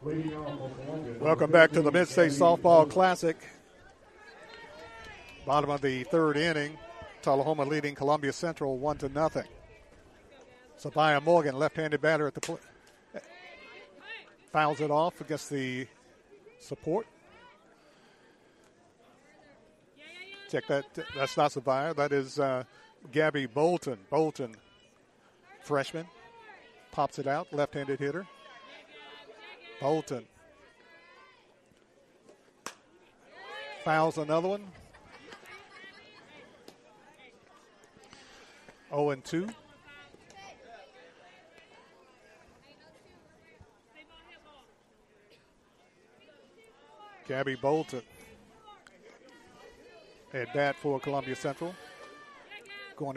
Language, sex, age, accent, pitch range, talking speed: English, male, 50-69, American, 140-170 Hz, 70 wpm